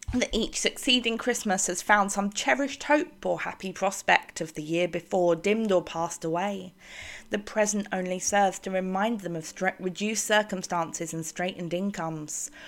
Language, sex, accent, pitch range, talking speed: English, female, British, 175-230 Hz, 160 wpm